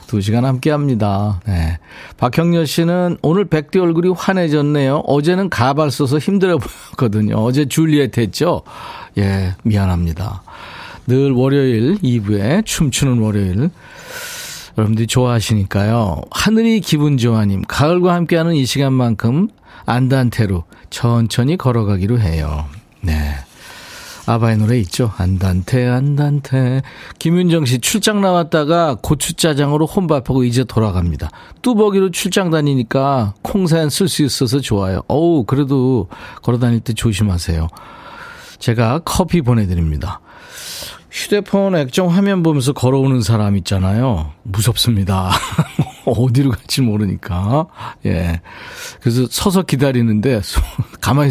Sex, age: male, 40-59